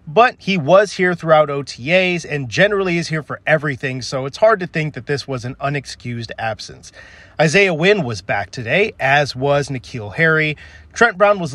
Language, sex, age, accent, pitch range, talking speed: English, male, 30-49, American, 130-180 Hz, 180 wpm